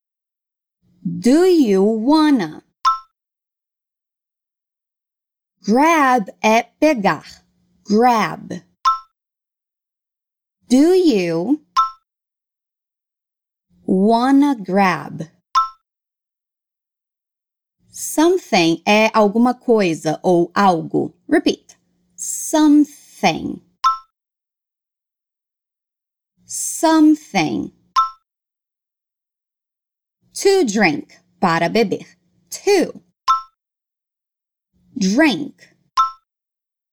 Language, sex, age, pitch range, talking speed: Portuguese, female, 30-49, 195-295 Hz, 40 wpm